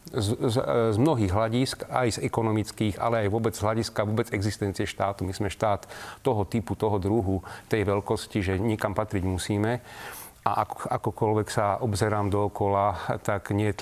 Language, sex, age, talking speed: Slovak, male, 40-59, 165 wpm